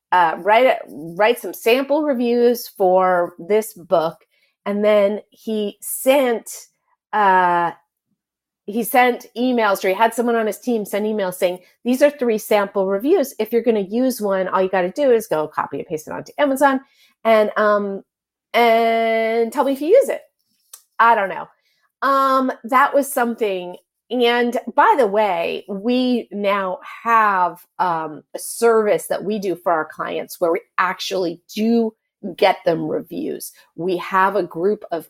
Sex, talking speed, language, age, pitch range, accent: female, 160 wpm, English, 40-59, 195-270 Hz, American